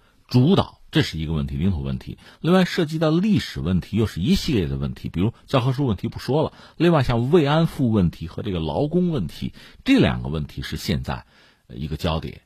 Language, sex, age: Chinese, male, 50-69